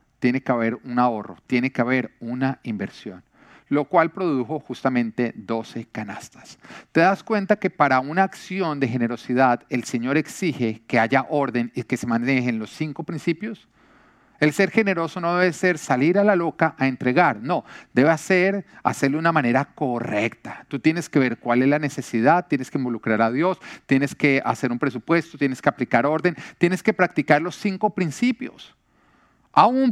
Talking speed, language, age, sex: 175 wpm, Spanish, 40-59, male